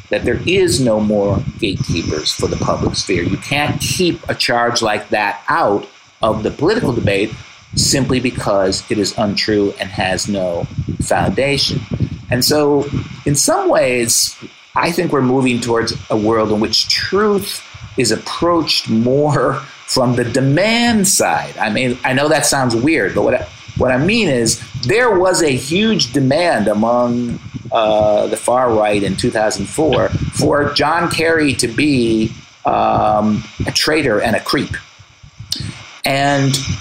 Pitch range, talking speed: 110-140 Hz, 150 wpm